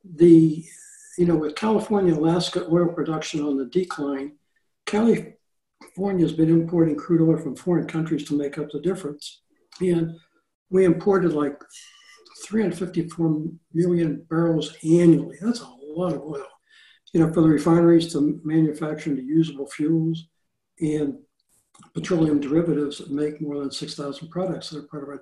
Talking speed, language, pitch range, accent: 150 wpm, English, 155-195 Hz, American